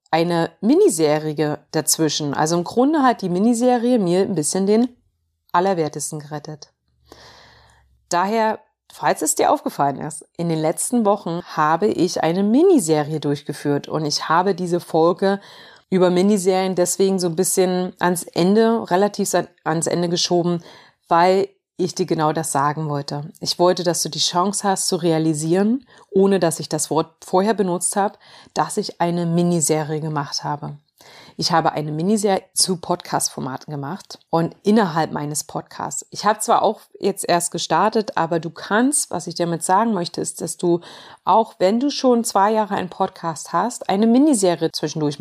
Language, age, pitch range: German, 30-49, 160-200 Hz